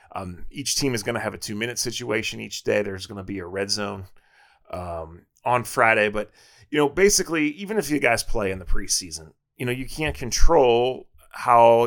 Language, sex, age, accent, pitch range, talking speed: English, male, 30-49, American, 95-120 Hz, 200 wpm